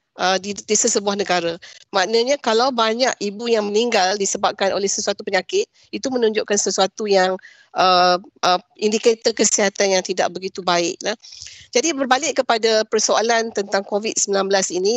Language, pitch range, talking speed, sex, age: Malay, 195-255 Hz, 140 wpm, female, 40-59